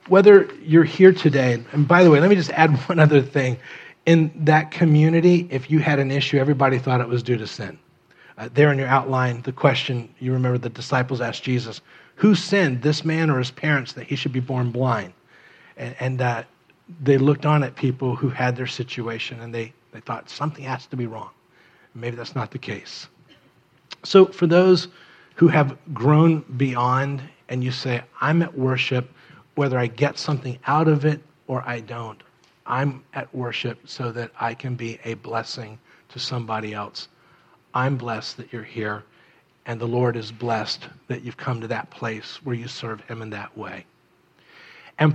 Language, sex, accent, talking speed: English, male, American, 190 wpm